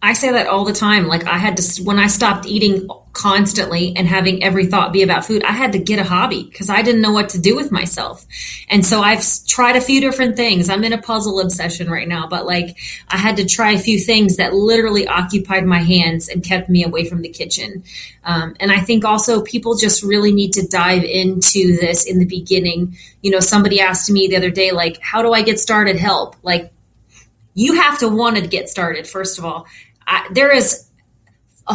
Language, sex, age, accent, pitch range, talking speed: English, female, 30-49, American, 185-225 Hz, 225 wpm